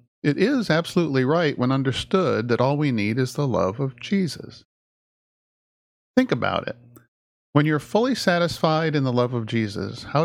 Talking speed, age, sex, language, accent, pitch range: 170 wpm, 40-59, male, English, American, 120-155 Hz